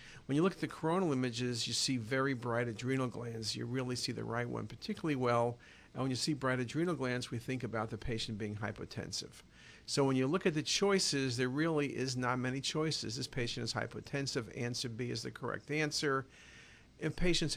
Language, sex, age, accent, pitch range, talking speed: English, male, 50-69, American, 120-145 Hz, 205 wpm